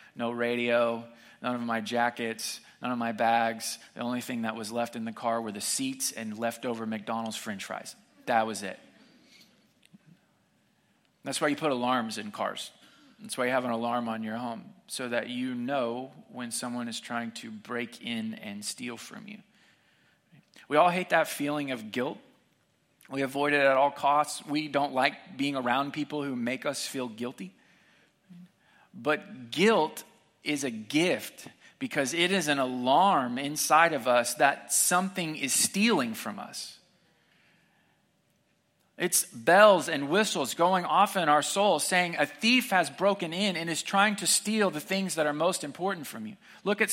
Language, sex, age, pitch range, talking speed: English, male, 20-39, 125-200 Hz, 170 wpm